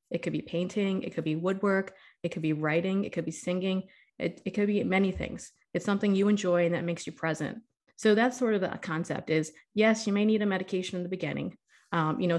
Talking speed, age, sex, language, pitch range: 240 wpm, 30-49, female, English, 170-200 Hz